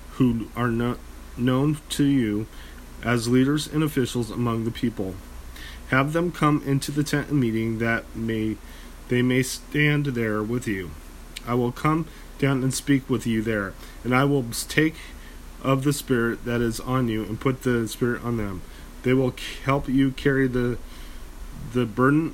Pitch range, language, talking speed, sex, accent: 100-130 Hz, English, 165 wpm, male, American